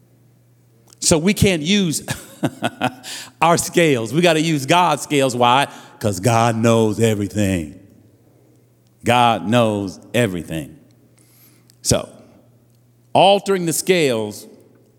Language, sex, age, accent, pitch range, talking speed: English, male, 50-69, American, 115-140 Hz, 95 wpm